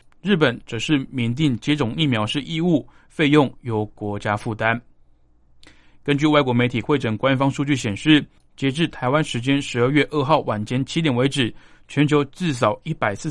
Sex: male